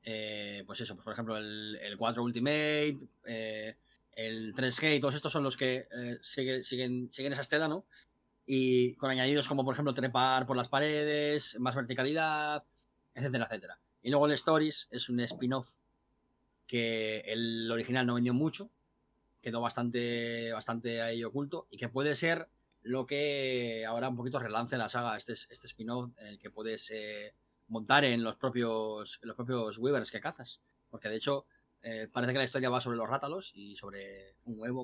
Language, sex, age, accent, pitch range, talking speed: Spanish, male, 20-39, Spanish, 115-135 Hz, 175 wpm